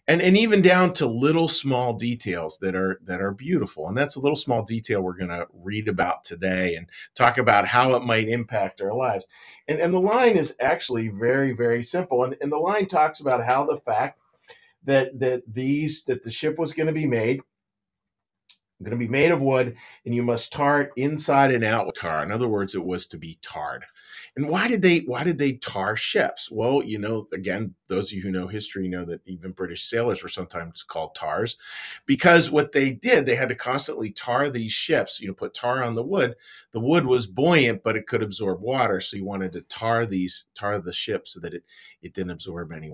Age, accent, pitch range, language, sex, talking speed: 40-59, American, 100-150 Hz, English, male, 215 wpm